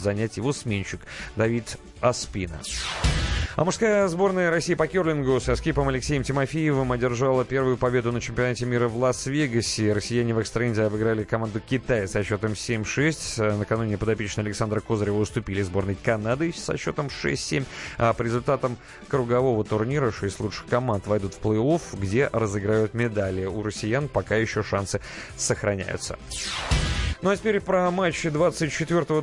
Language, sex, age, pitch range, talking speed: Russian, male, 30-49, 110-135 Hz, 140 wpm